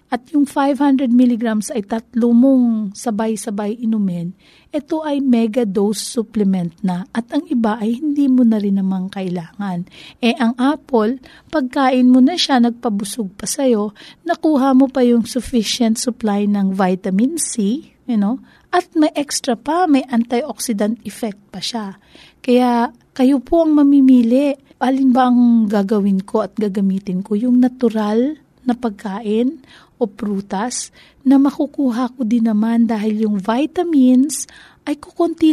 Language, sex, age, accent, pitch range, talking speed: Filipino, female, 40-59, native, 205-265 Hz, 140 wpm